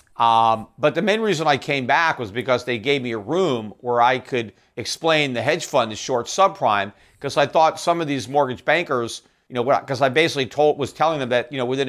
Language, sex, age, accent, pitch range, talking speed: English, male, 50-69, American, 120-150 Hz, 235 wpm